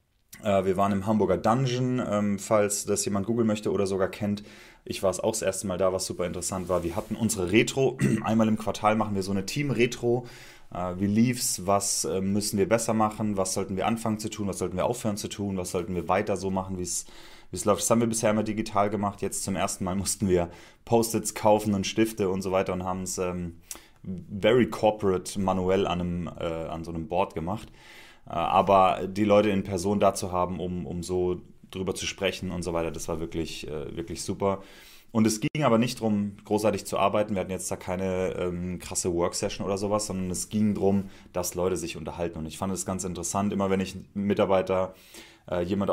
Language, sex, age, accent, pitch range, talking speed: German, male, 30-49, German, 90-105 Hz, 210 wpm